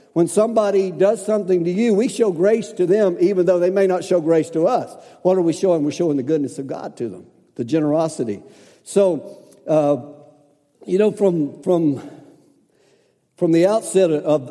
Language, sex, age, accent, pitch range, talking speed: English, male, 60-79, American, 150-195 Hz, 180 wpm